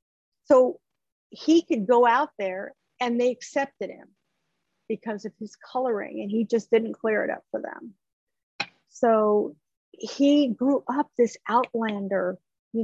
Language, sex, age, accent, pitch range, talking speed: English, female, 50-69, American, 200-235 Hz, 140 wpm